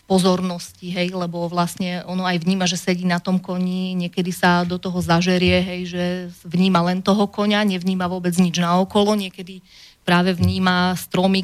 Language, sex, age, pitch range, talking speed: Slovak, female, 30-49, 175-185 Hz, 165 wpm